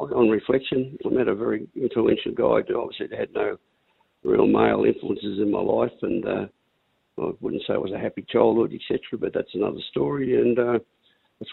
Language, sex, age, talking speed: English, male, 60-79, 185 wpm